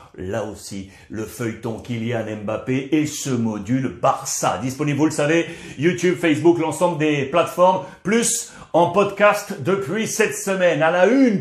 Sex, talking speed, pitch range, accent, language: male, 145 wpm, 140-190 Hz, French, French